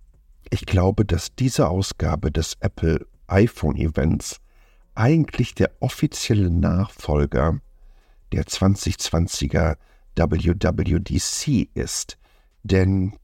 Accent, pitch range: German, 80-95 Hz